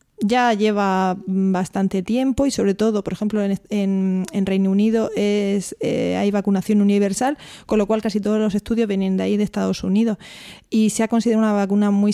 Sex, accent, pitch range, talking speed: female, Spanish, 190-215 Hz, 195 wpm